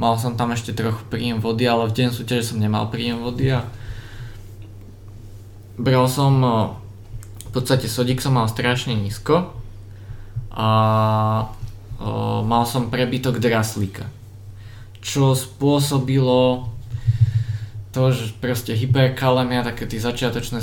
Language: Czech